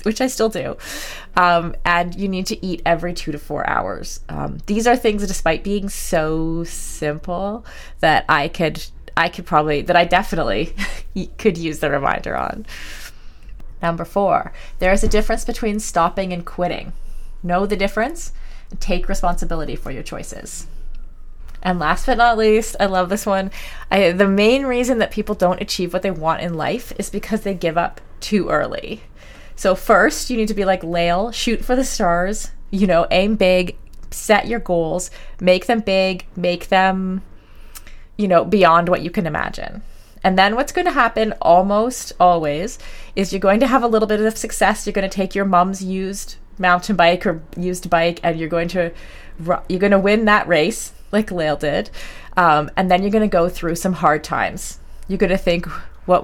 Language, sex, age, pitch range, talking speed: English, female, 20-39, 170-210 Hz, 185 wpm